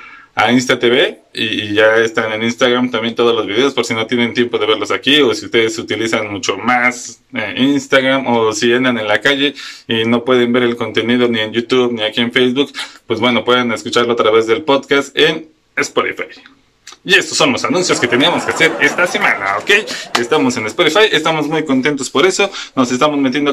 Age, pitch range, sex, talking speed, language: 20-39, 125-160 Hz, male, 200 wpm, Spanish